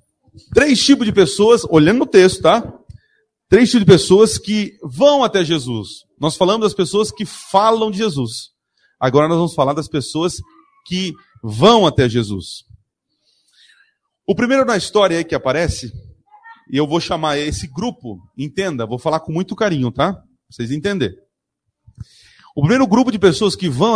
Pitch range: 145-220 Hz